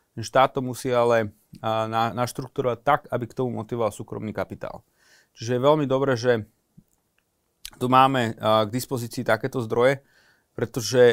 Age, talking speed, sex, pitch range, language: 30-49, 130 wpm, male, 115-130 Hz, Slovak